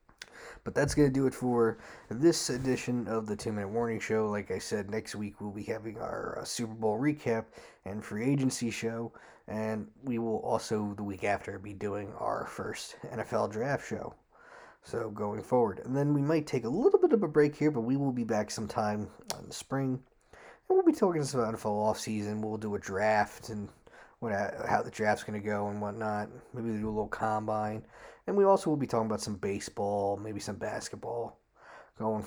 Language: English